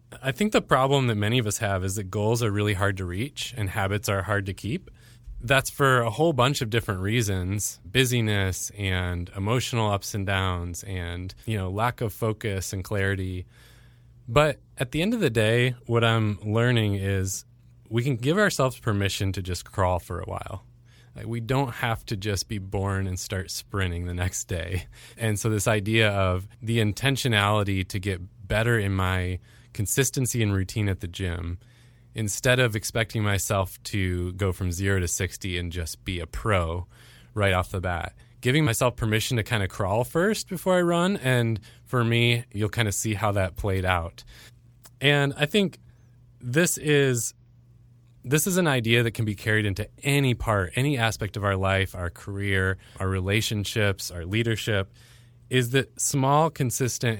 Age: 20-39